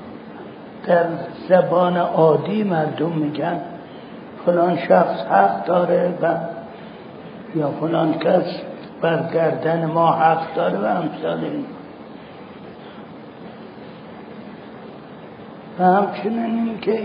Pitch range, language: 165-210 Hz, Persian